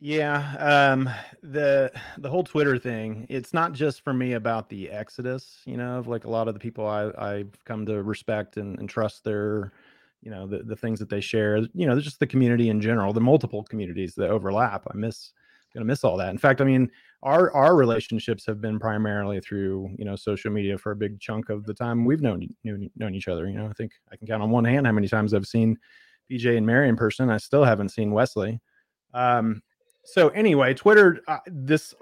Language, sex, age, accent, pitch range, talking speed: English, male, 30-49, American, 110-130 Hz, 220 wpm